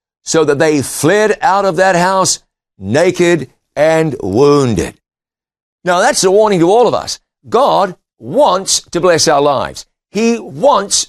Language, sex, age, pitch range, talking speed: English, male, 60-79, 150-195 Hz, 145 wpm